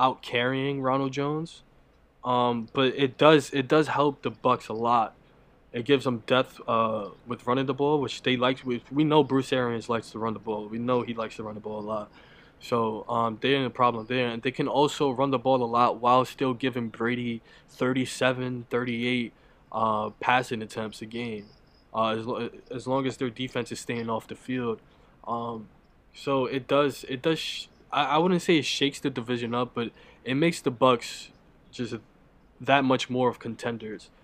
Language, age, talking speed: English, 20-39, 200 wpm